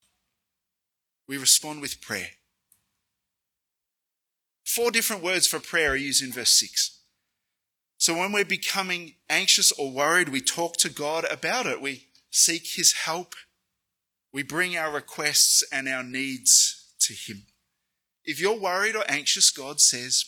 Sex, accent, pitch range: male, Australian, 130-185 Hz